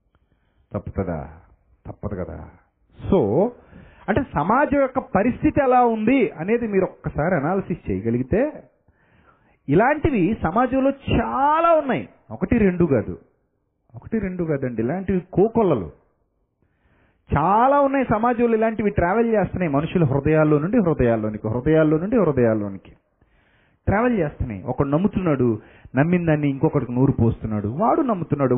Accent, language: native, Telugu